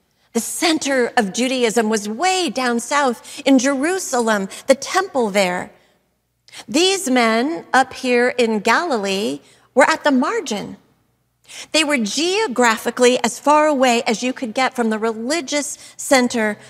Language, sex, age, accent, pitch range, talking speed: English, female, 40-59, American, 235-285 Hz, 135 wpm